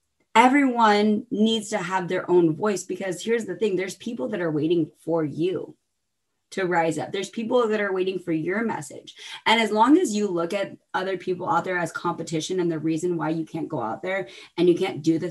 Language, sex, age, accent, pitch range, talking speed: English, female, 20-39, American, 170-245 Hz, 220 wpm